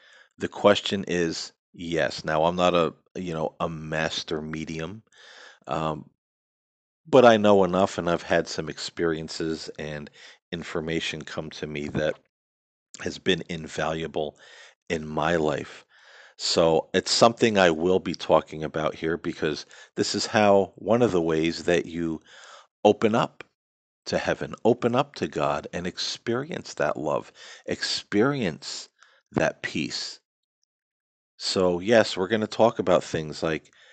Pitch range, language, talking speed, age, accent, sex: 80-90 Hz, English, 140 wpm, 40-59, American, male